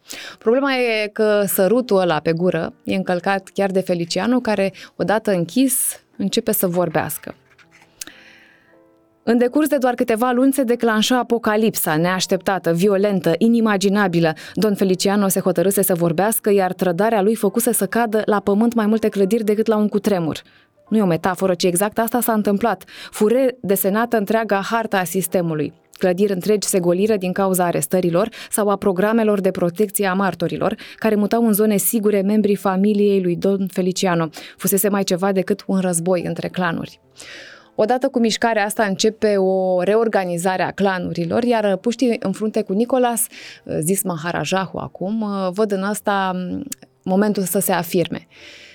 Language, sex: Romanian, female